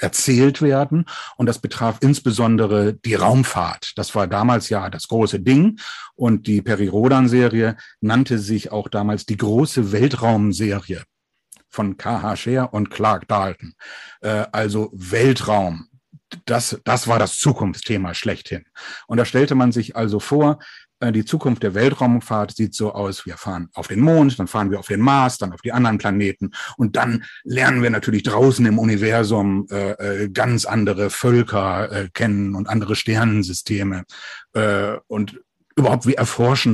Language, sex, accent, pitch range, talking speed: German, male, German, 105-130 Hz, 150 wpm